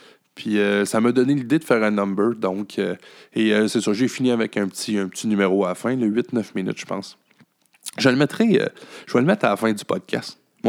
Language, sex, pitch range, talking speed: French, male, 100-120 Hz, 255 wpm